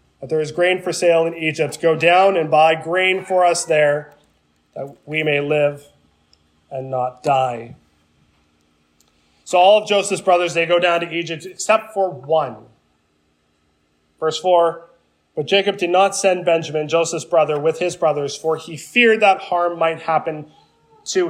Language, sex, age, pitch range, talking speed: English, male, 20-39, 125-170 Hz, 160 wpm